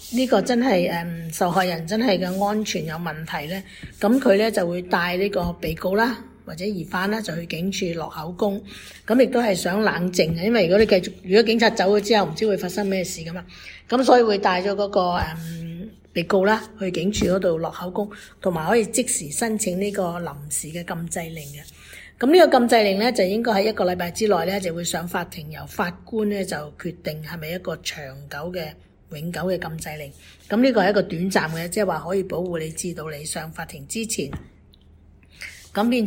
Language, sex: English, female